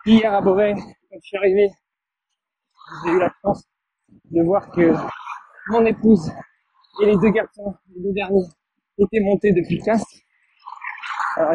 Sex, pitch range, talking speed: male, 175-215 Hz, 145 wpm